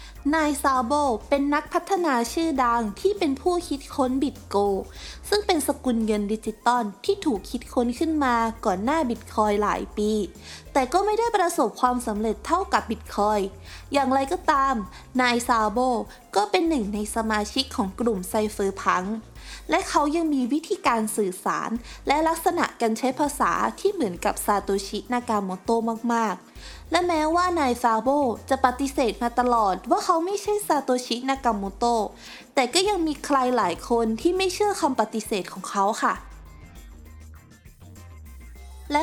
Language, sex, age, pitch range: Thai, female, 20-39, 215-300 Hz